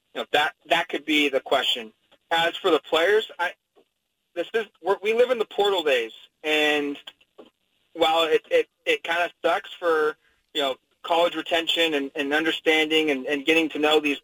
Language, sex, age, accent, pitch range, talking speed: English, male, 30-49, American, 140-175 Hz, 185 wpm